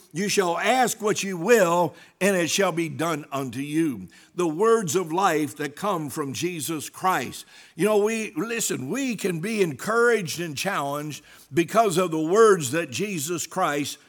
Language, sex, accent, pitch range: English, male, American, 150-195 Hz